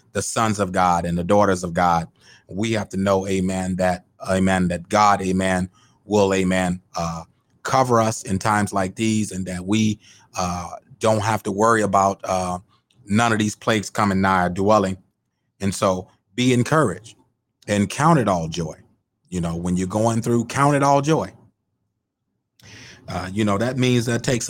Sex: male